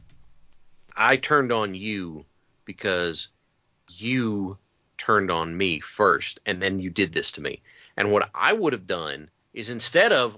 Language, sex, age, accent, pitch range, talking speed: English, male, 40-59, American, 110-145 Hz, 150 wpm